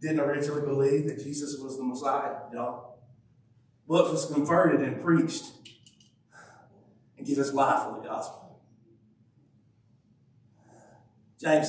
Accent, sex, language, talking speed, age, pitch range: American, male, English, 115 wpm, 50-69, 120-160 Hz